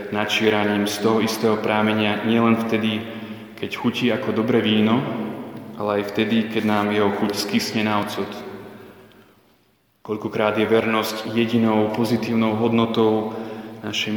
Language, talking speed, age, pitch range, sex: Slovak, 120 wpm, 20-39, 105-115 Hz, male